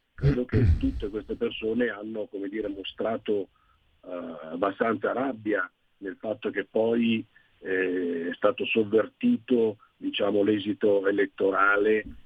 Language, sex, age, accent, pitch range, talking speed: Italian, male, 50-69, native, 100-140 Hz, 115 wpm